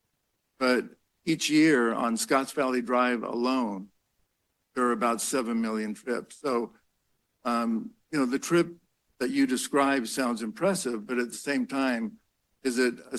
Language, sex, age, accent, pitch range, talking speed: English, male, 60-79, American, 120-145 Hz, 150 wpm